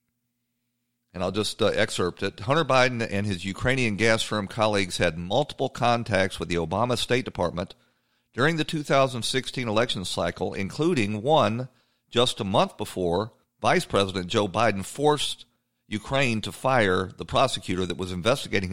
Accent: American